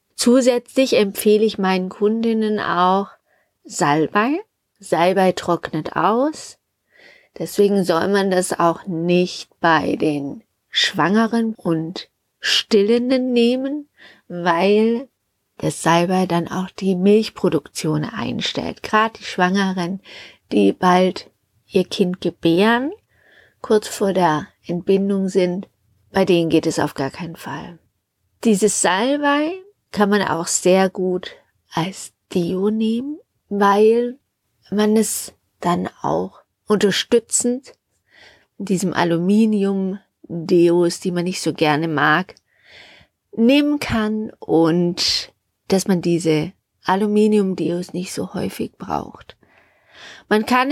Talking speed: 110 wpm